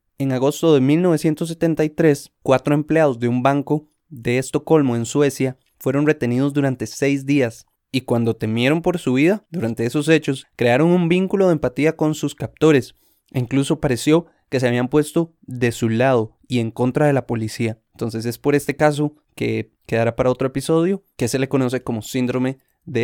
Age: 20-39